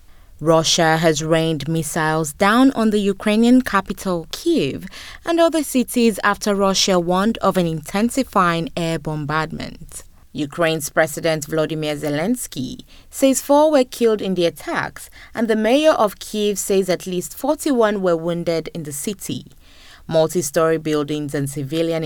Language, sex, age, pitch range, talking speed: English, female, 20-39, 160-235 Hz, 135 wpm